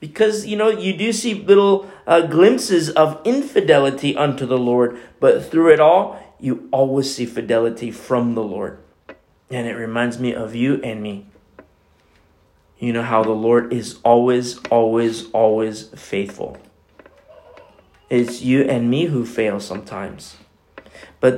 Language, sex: English, male